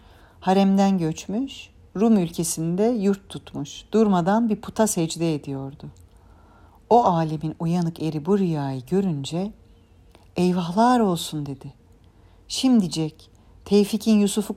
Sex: female